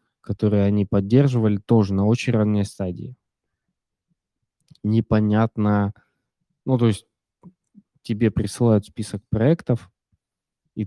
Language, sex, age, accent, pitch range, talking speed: Russian, male, 20-39, native, 105-130 Hz, 95 wpm